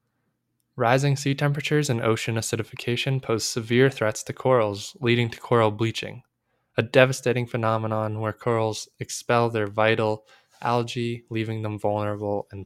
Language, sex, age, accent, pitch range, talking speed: English, male, 10-29, American, 110-130 Hz, 135 wpm